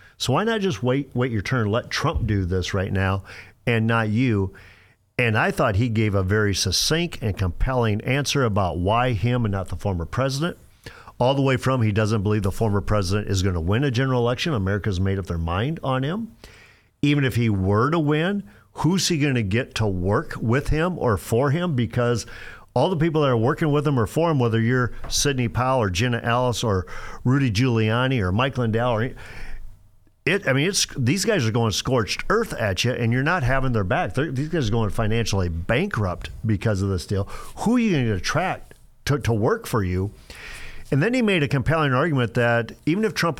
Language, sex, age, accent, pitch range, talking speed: English, male, 50-69, American, 105-135 Hz, 215 wpm